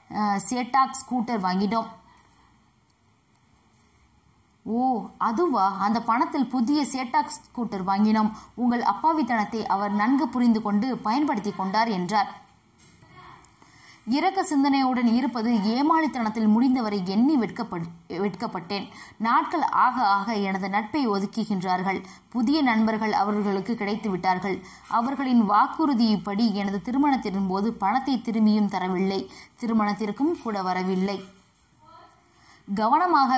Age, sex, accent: 20-39, female, native